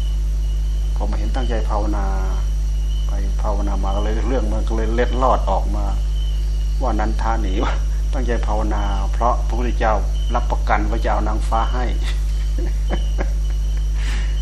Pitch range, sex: 75-115 Hz, male